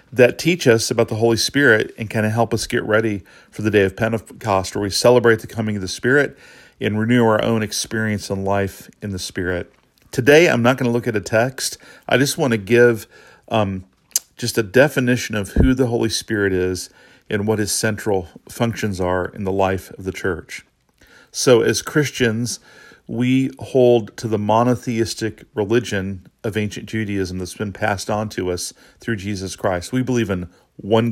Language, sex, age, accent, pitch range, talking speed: English, male, 40-59, American, 100-120 Hz, 190 wpm